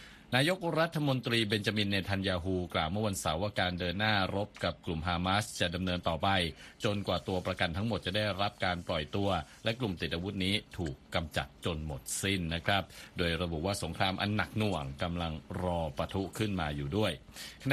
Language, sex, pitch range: Thai, male, 90-115 Hz